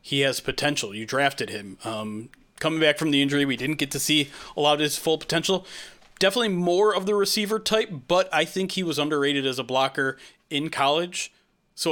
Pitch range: 135-175 Hz